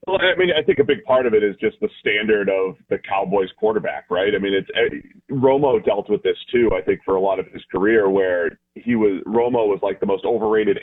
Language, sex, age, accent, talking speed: English, male, 30-49, American, 250 wpm